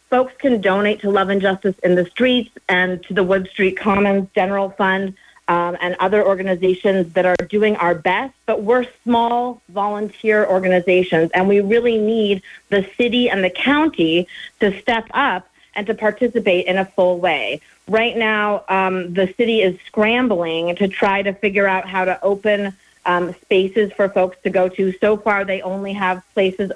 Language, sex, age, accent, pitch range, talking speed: English, female, 40-59, American, 185-225 Hz, 175 wpm